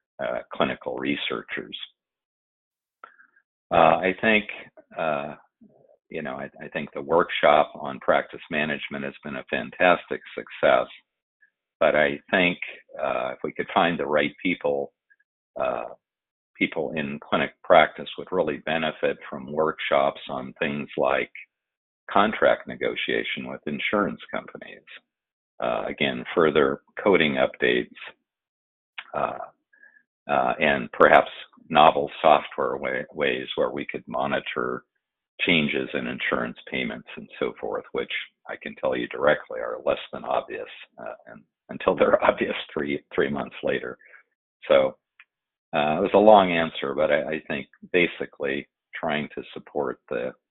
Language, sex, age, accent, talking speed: English, male, 50-69, American, 130 wpm